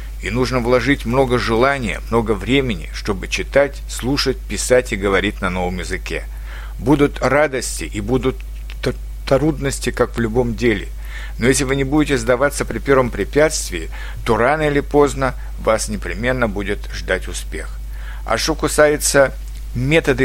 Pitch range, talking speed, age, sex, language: 100-140 Hz, 140 wpm, 60-79, male, Russian